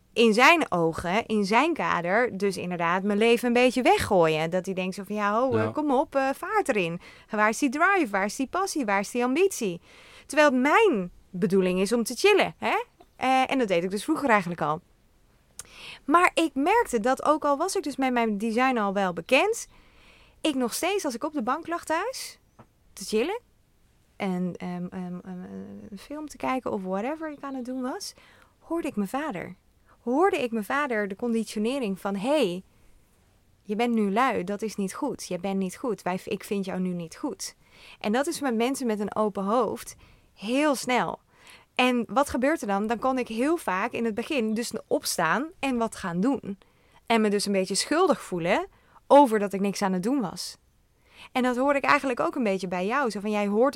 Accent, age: Dutch, 20-39